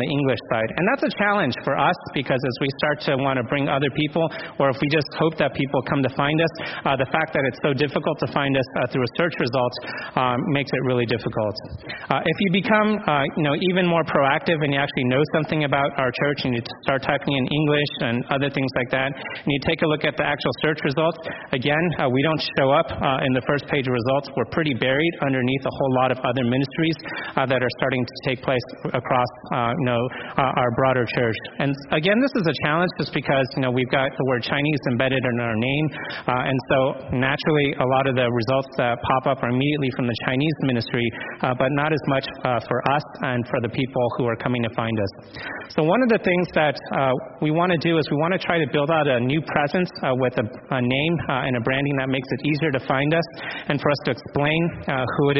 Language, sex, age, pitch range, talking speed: English, male, 30-49, 130-155 Hz, 245 wpm